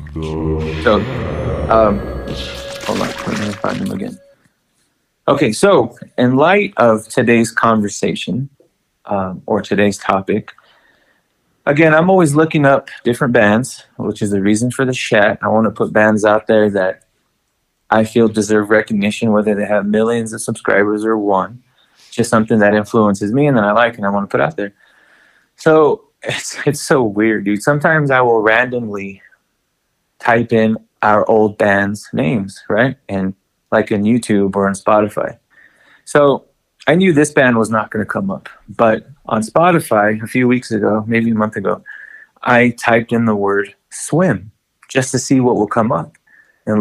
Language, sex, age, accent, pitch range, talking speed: English, male, 20-39, American, 105-130 Hz, 165 wpm